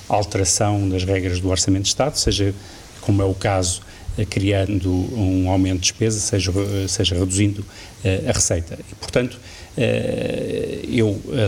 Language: Portuguese